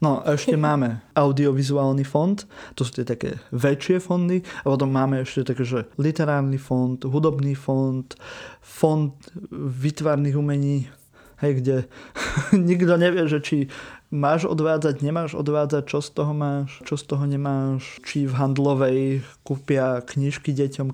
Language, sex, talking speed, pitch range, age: Slovak, male, 140 wpm, 135-150 Hz, 20-39